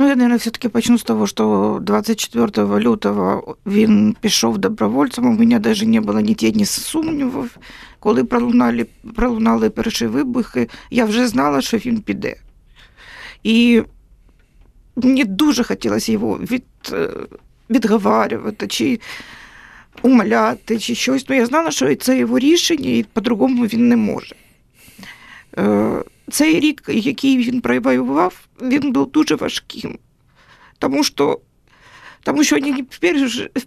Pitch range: 225-280 Hz